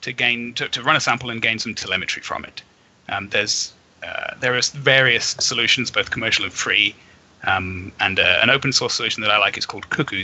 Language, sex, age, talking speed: English, male, 30-49, 215 wpm